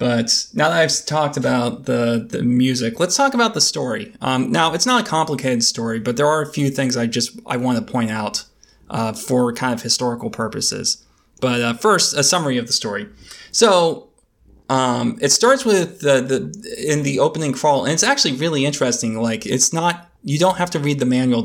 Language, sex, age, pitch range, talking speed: English, male, 20-39, 115-145 Hz, 205 wpm